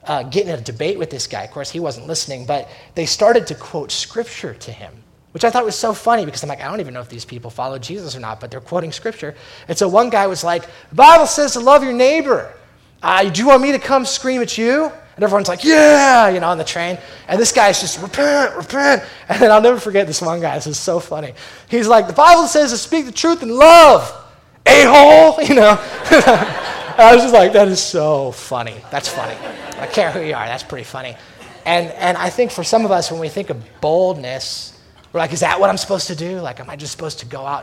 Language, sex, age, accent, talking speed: English, male, 20-39, American, 250 wpm